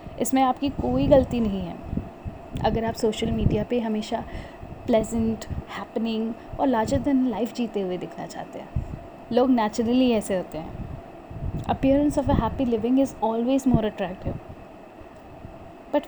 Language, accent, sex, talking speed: Hindi, native, female, 140 wpm